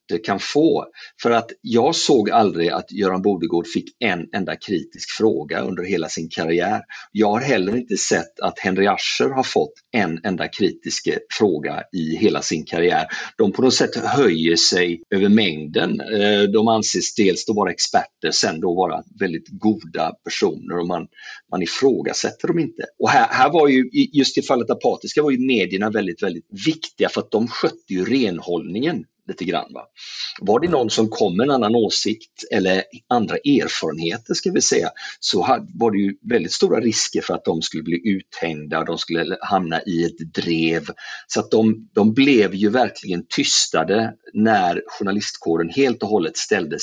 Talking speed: 175 wpm